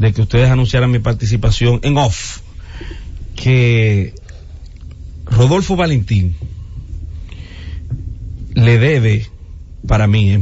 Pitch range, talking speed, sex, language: 100-140 Hz, 90 wpm, male, English